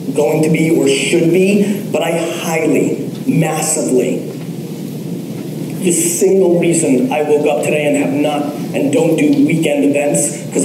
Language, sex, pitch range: English, male, 150-200 Hz